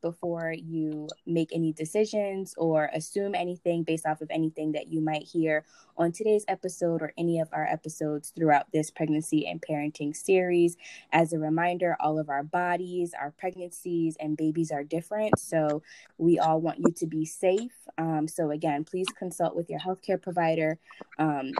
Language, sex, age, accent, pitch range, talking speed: English, female, 10-29, American, 155-180 Hz, 170 wpm